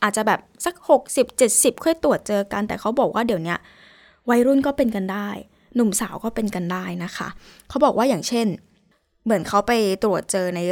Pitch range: 195-240 Hz